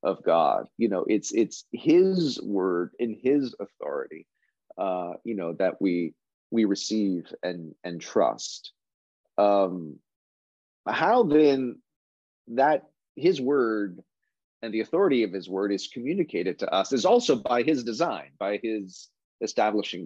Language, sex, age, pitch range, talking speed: English, male, 30-49, 95-135 Hz, 135 wpm